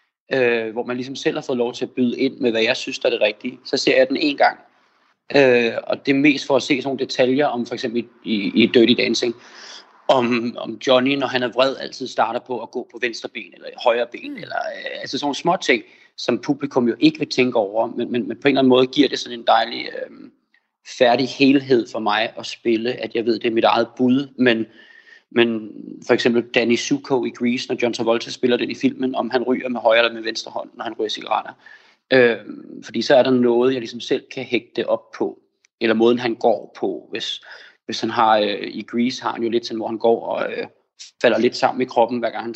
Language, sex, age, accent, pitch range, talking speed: Danish, male, 30-49, native, 120-135 Hz, 250 wpm